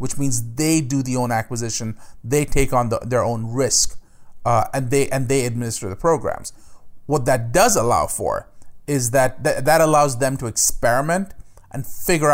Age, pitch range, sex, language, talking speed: 30-49, 115-140 Hz, male, English, 180 wpm